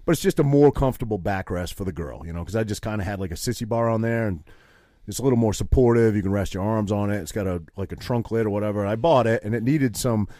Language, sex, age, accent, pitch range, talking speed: English, male, 30-49, American, 95-120 Hz, 310 wpm